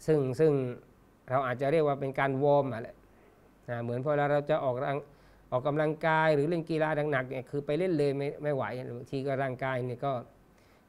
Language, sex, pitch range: Thai, male, 130-155 Hz